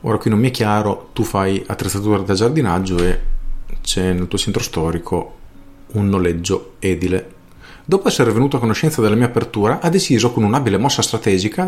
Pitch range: 100-135 Hz